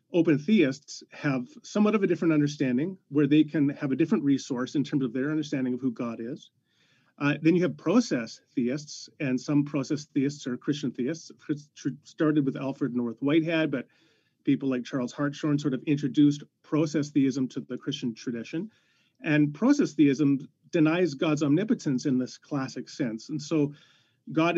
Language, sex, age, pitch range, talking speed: English, male, 30-49, 135-160 Hz, 170 wpm